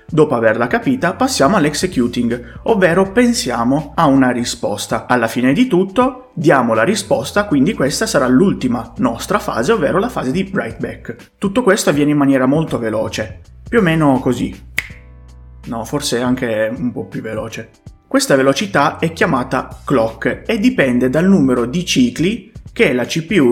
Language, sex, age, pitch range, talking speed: Italian, male, 30-49, 115-150 Hz, 155 wpm